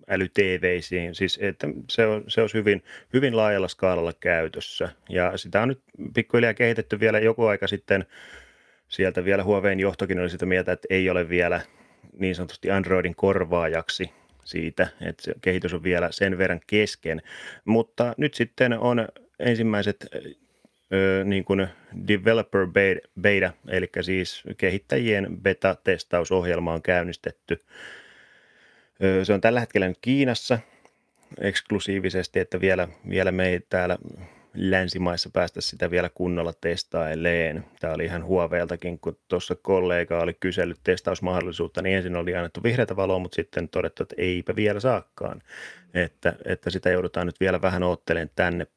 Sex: male